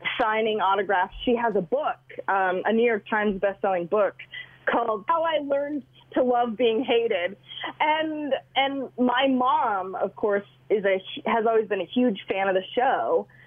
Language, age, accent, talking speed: English, 30-49, American, 175 wpm